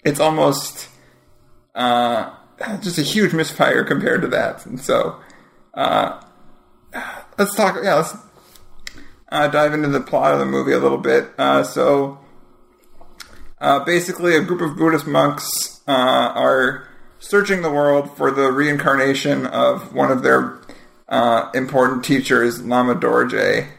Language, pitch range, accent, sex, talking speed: English, 120-150 Hz, American, male, 135 wpm